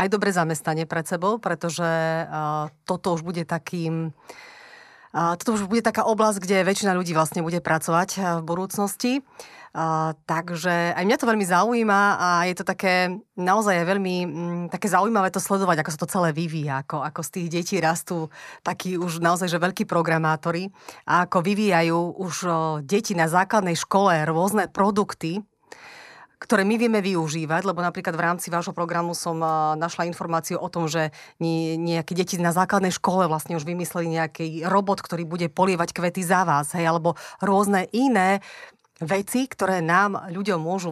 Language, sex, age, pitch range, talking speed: Slovak, female, 30-49, 165-195 Hz, 165 wpm